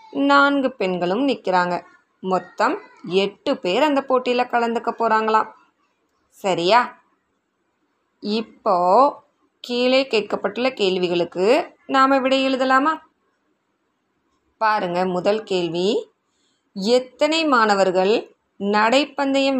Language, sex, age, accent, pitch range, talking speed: Tamil, female, 20-39, native, 185-270 Hz, 75 wpm